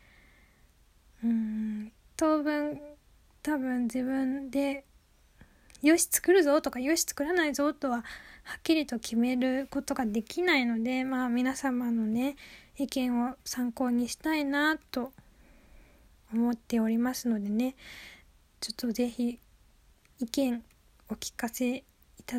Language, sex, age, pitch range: Japanese, female, 10-29, 240-285 Hz